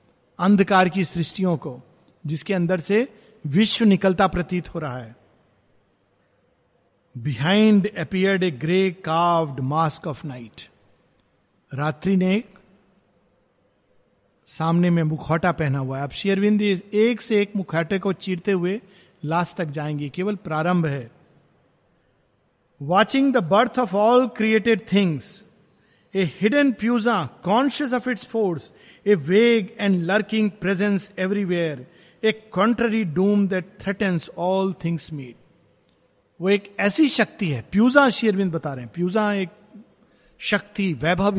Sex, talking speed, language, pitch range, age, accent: male, 115 wpm, Hindi, 165-215 Hz, 50-69, native